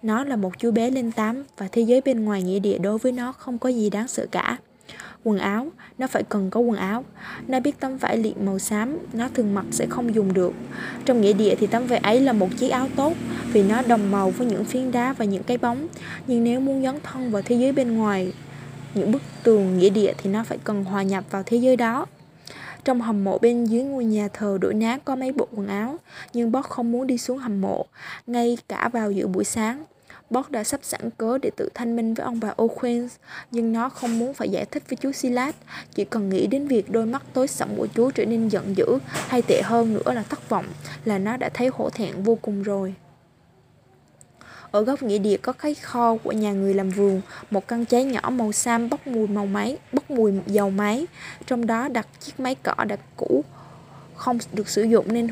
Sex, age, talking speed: female, 20-39, 235 wpm